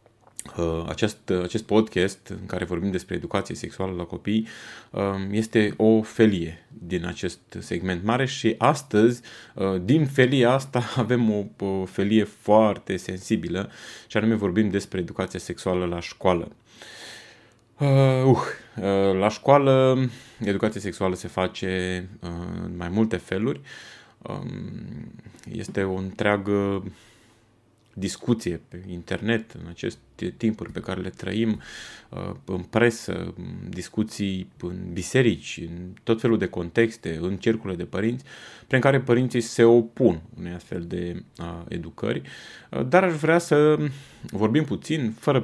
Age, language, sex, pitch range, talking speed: 20-39, Romanian, male, 95-120 Hz, 120 wpm